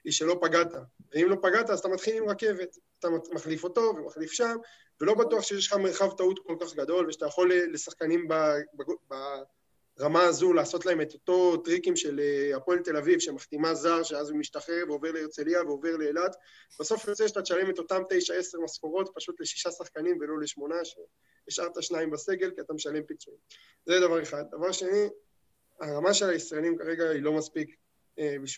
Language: Hebrew